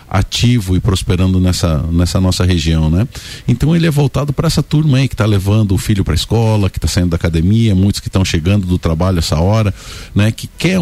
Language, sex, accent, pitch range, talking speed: Portuguese, male, Brazilian, 90-120 Hz, 220 wpm